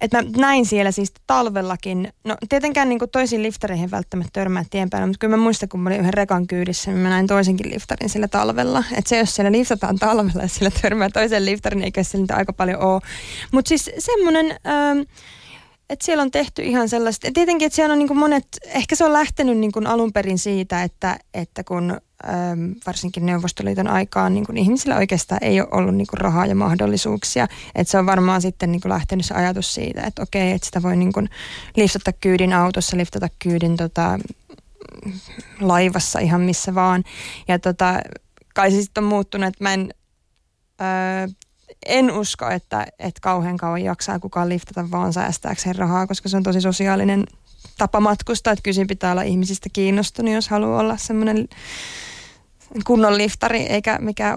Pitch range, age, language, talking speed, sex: 185-220 Hz, 20-39, Finnish, 180 wpm, female